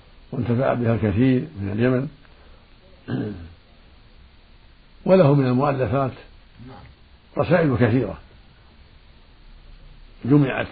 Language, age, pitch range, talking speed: Arabic, 60-79, 95-125 Hz, 60 wpm